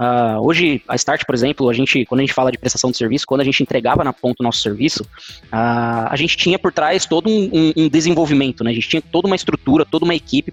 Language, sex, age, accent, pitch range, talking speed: Portuguese, male, 20-39, Brazilian, 130-155 Hz, 260 wpm